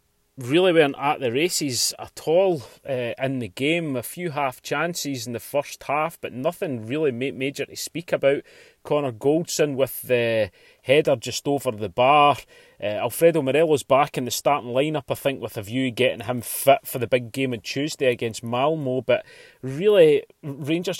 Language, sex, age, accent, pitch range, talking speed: English, male, 30-49, British, 130-155 Hz, 185 wpm